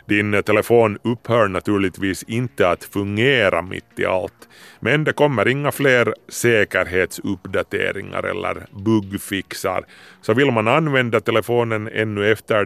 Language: Swedish